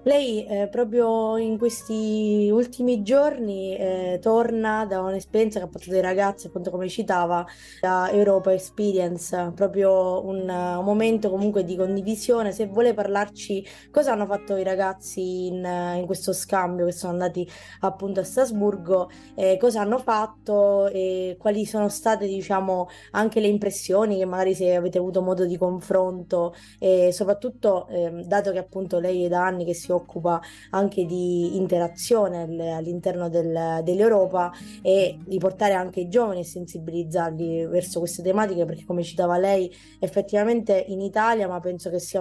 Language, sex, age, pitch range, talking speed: Italian, female, 20-39, 180-205 Hz, 155 wpm